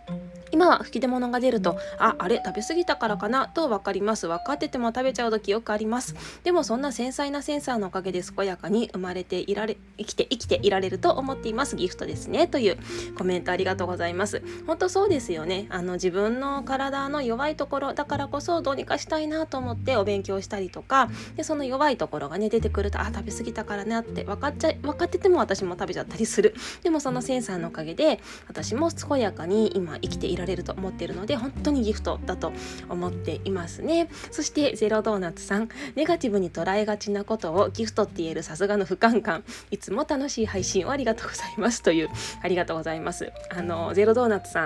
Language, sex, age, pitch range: Japanese, female, 20-39, 185-260 Hz